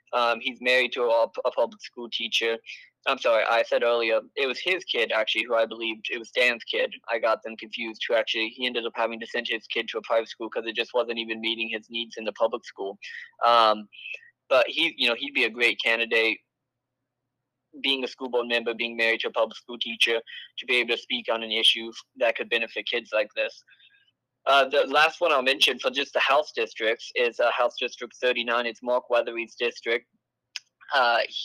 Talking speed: 215 wpm